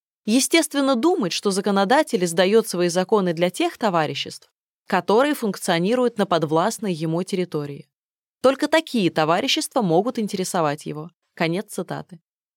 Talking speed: 115 wpm